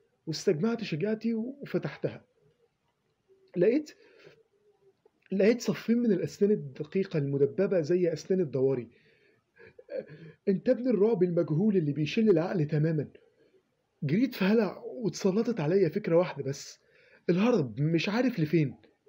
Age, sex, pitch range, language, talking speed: 30-49, male, 150-215 Hz, Arabic, 100 wpm